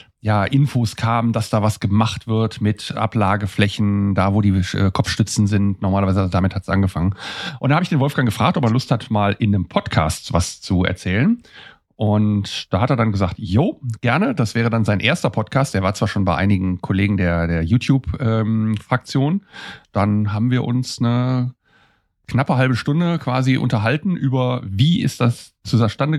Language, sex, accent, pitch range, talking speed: German, male, German, 100-130 Hz, 180 wpm